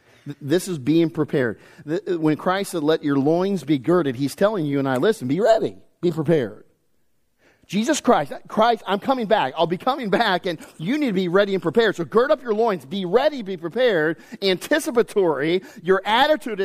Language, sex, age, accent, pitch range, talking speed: English, male, 40-59, American, 155-210 Hz, 185 wpm